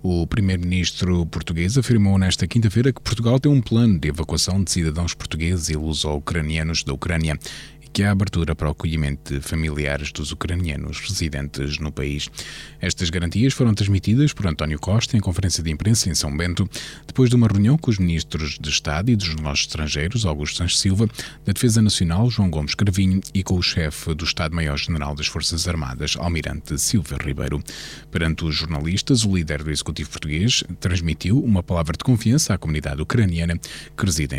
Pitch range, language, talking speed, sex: 80-105 Hz, Portuguese, 175 wpm, male